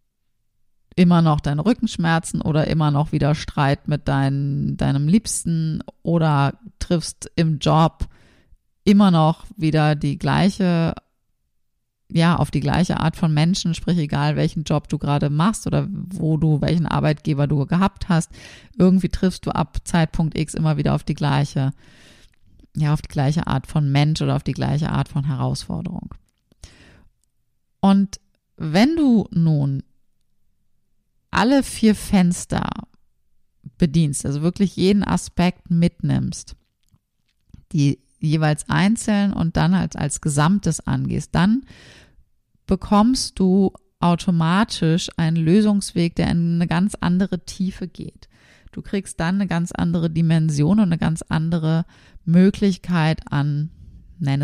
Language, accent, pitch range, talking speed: German, German, 145-185 Hz, 130 wpm